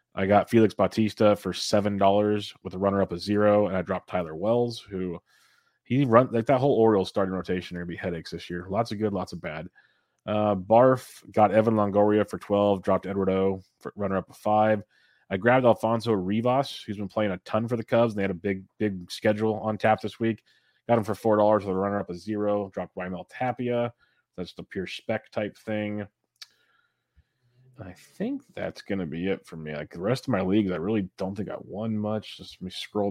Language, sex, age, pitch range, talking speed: English, male, 30-49, 100-115 Hz, 215 wpm